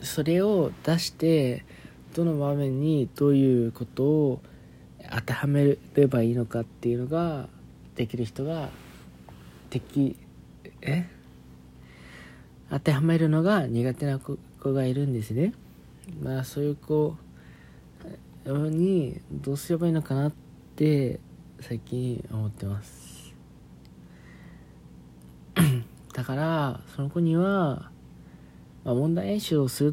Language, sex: Japanese, male